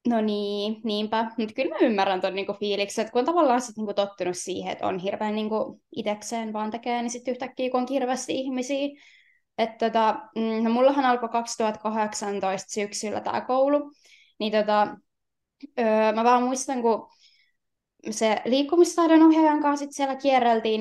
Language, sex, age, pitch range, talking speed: Finnish, female, 20-39, 205-245 Hz, 155 wpm